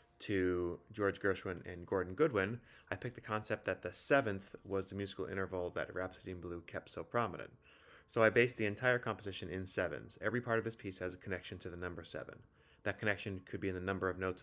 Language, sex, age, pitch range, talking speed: English, male, 30-49, 90-110 Hz, 220 wpm